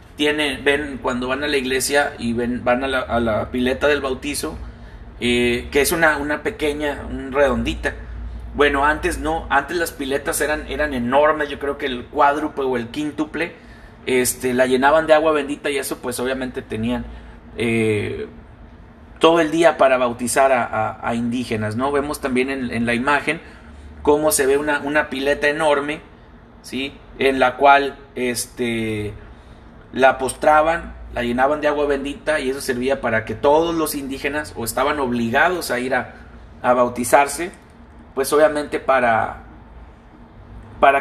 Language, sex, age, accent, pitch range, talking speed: Spanish, male, 30-49, Mexican, 120-150 Hz, 160 wpm